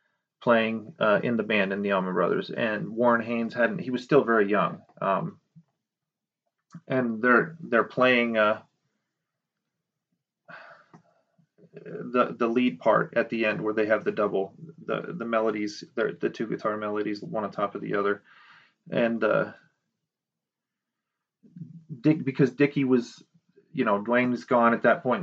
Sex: male